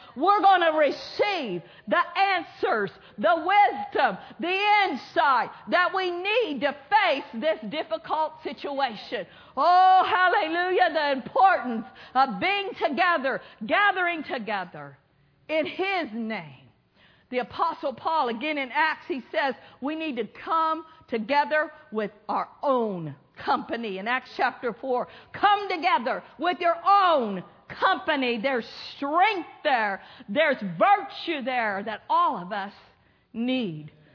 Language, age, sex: English, 50-69, female